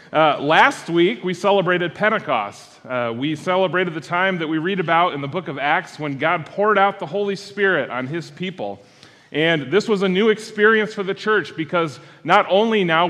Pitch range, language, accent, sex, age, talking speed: 145-190 Hz, English, American, male, 30-49, 195 wpm